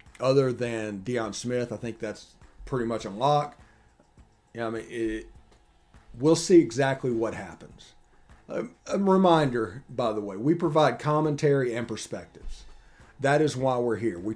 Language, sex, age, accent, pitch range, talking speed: English, male, 40-59, American, 110-135 Hz, 155 wpm